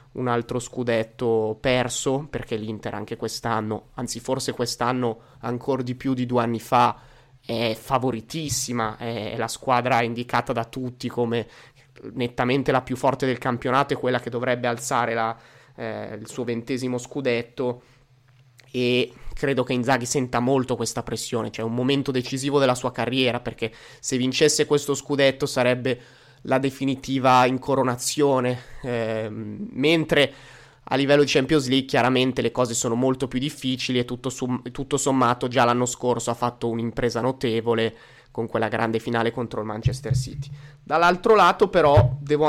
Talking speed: 150 wpm